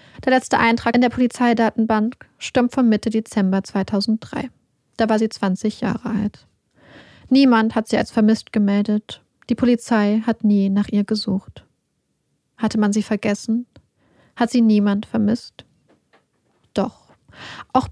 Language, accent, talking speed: German, German, 135 wpm